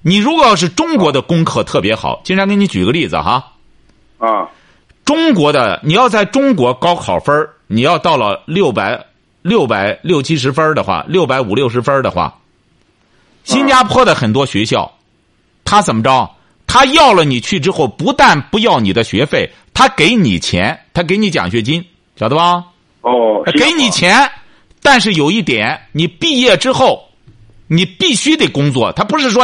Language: Chinese